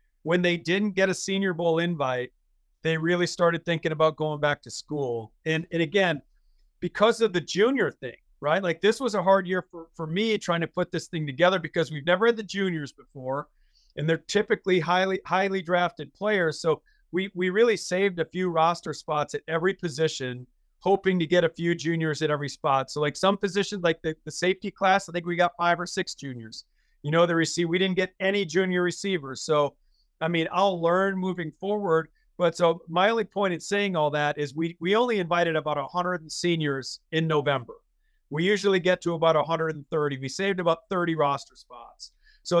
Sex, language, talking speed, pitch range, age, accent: male, English, 200 wpm, 155-195 Hz, 40-59, American